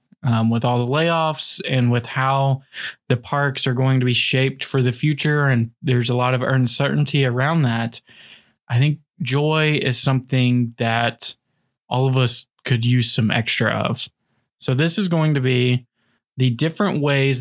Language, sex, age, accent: English, male, 20-39, American